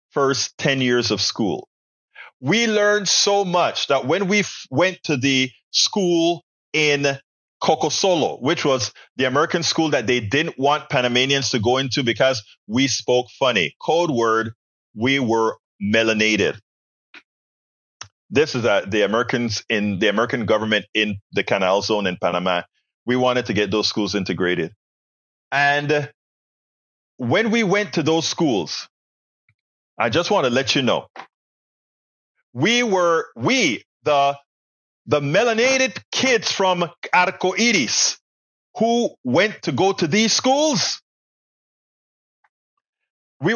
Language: English